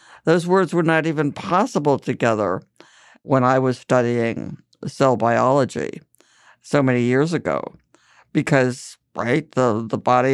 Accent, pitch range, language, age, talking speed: American, 125-160 Hz, English, 60-79, 130 wpm